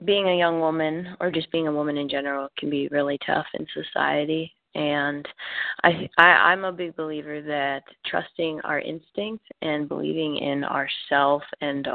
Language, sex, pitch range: English, female, 145-160 Hz